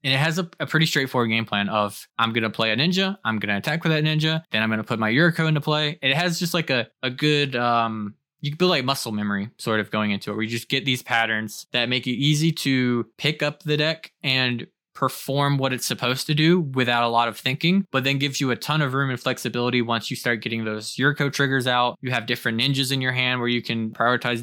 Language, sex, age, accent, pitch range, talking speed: English, male, 20-39, American, 115-150 Hz, 255 wpm